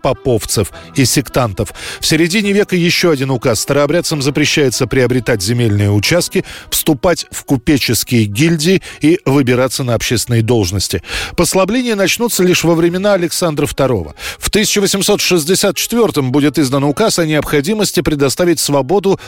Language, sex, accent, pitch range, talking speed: Russian, male, native, 125-170 Hz, 120 wpm